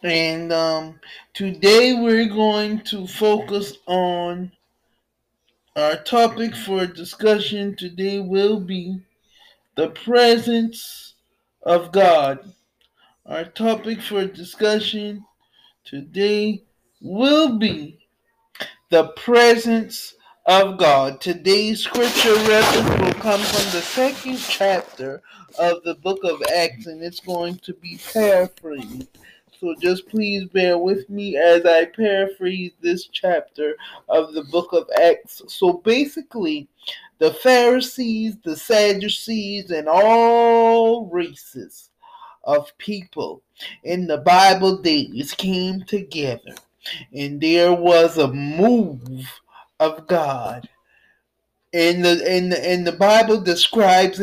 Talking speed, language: 110 wpm, English